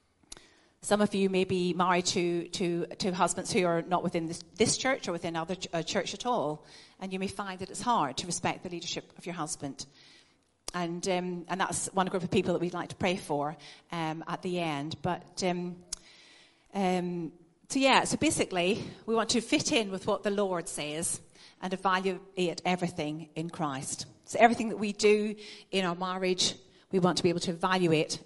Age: 40-59